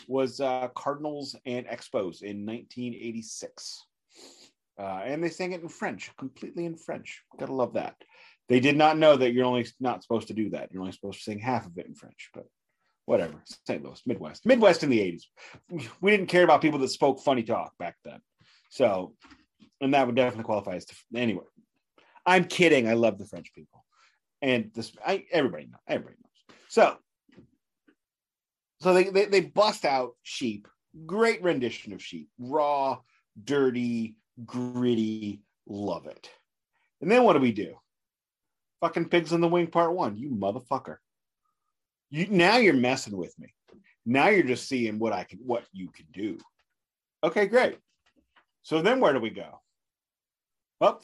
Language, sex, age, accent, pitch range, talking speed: English, male, 30-49, American, 115-170 Hz, 170 wpm